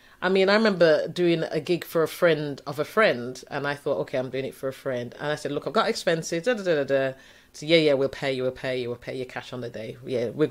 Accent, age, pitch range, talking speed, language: British, 30-49, 135-185 Hz, 295 wpm, English